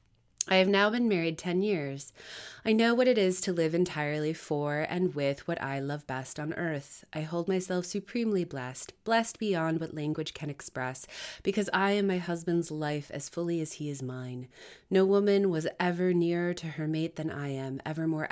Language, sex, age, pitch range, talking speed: English, female, 30-49, 150-195 Hz, 195 wpm